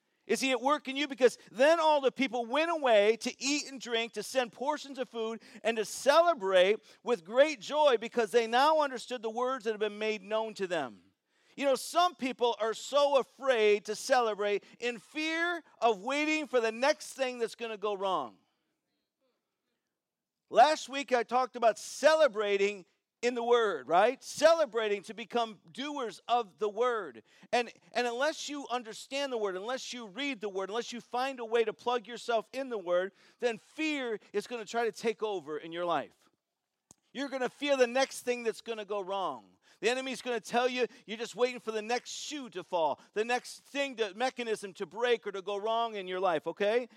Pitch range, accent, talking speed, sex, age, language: 210-265 Hz, American, 200 wpm, male, 50-69, English